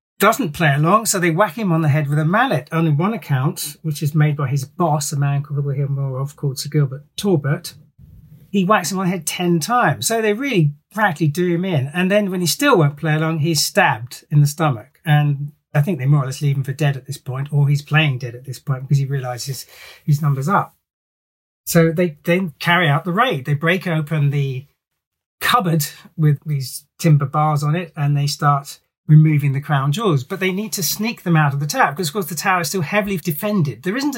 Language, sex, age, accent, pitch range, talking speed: English, male, 40-59, British, 145-180 Hz, 235 wpm